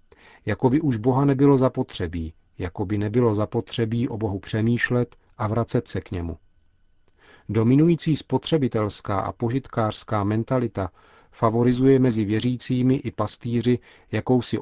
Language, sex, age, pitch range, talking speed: Czech, male, 50-69, 105-125 Hz, 110 wpm